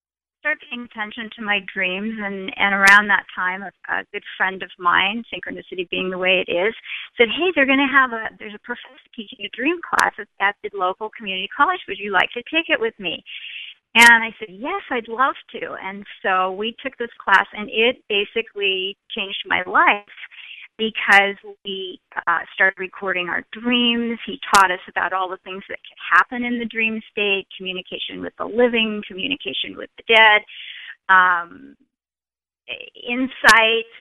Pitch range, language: 195-250 Hz, English